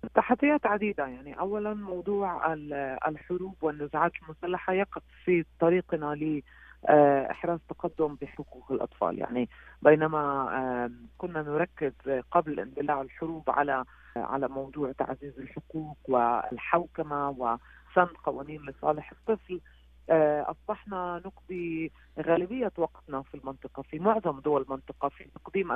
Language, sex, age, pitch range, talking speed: Arabic, female, 40-59, 140-170 Hz, 105 wpm